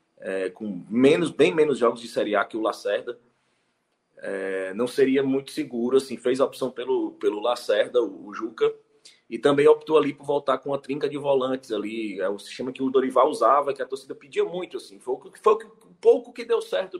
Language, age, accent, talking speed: Portuguese, 20-39, Brazilian, 210 wpm